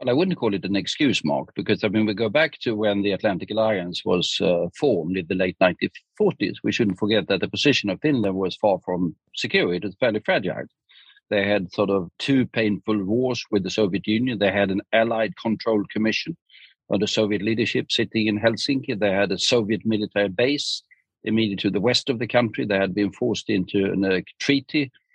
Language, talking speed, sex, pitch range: English, 205 wpm, male, 100-125 Hz